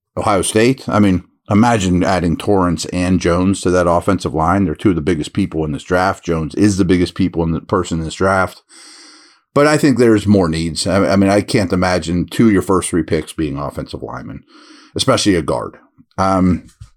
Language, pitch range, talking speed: English, 90-120 Hz, 205 wpm